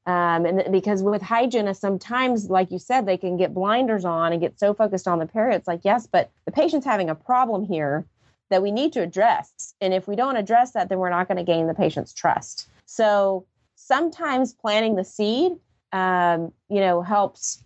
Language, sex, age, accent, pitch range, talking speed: English, female, 30-49, American, 175-220 Hz, 205 wpm